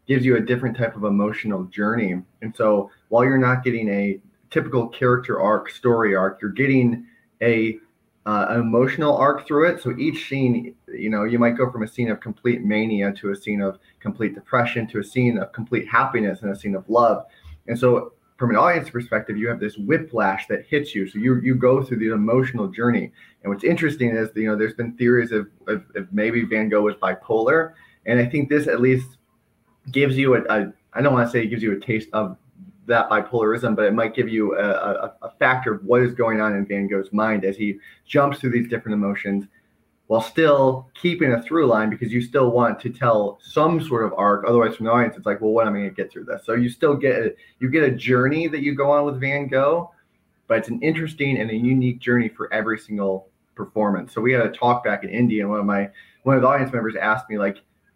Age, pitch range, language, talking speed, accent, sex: 30-49, 105-125 Hz, English, 230 wpm, American, male